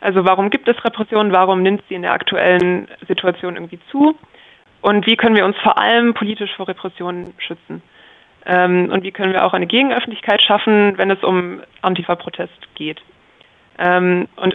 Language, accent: German, German